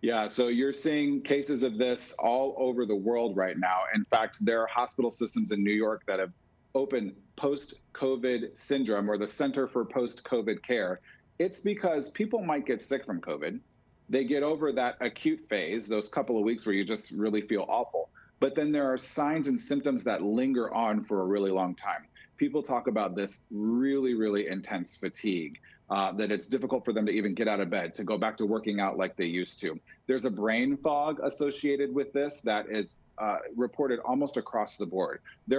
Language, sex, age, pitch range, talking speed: English, male, 40-59, 110-145 Hz, 200 wpm